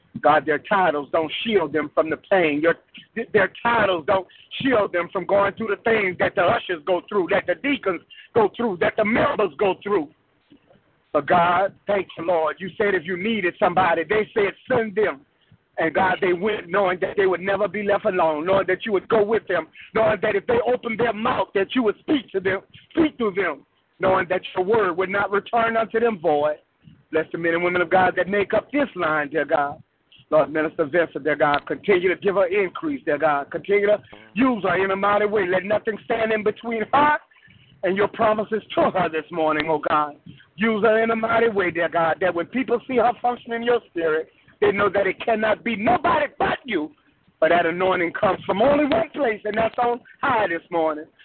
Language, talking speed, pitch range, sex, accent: English, 215 wpm, 180-230 Hz, male, American